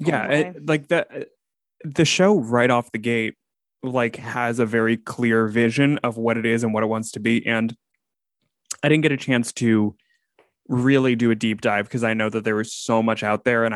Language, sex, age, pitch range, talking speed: English, male, 20-39, 110-135 Hz, 215 wpm